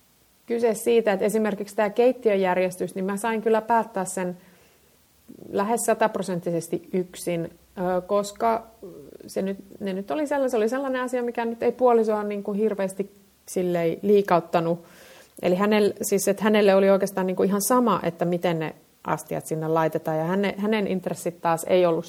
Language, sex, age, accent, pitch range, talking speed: Finnish, female, 30-49, native, 175-215 Hz, 160 wpm